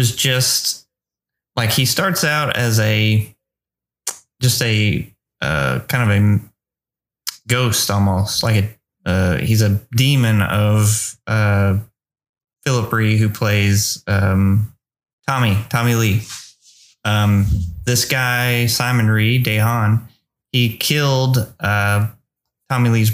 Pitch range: 105-125 Hz